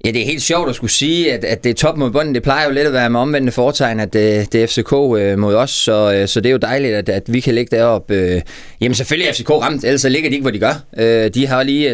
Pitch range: 110-135 Hz